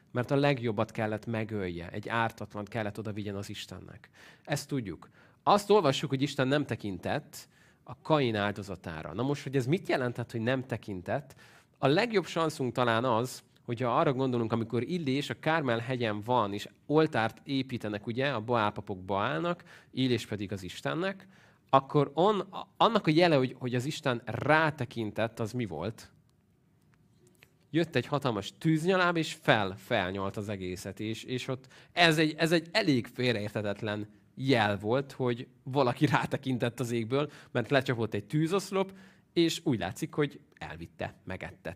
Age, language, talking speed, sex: 30-49, Hungarian, 150 wpm, male